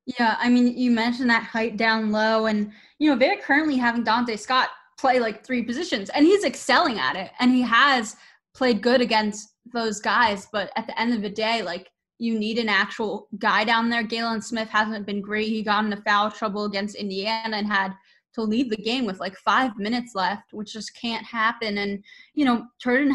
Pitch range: 210-245 Hz